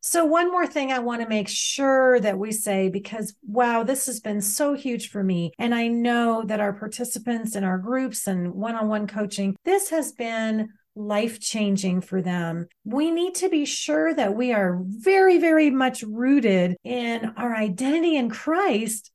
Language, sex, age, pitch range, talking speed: English, female, 40-59, 205-275 Hz, 175 wpm